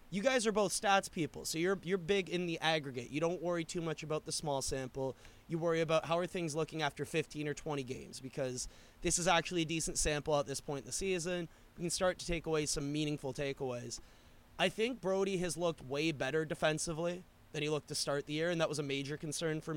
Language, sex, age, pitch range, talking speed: English, male, 20-39, 135-170 Hz, 235 wpm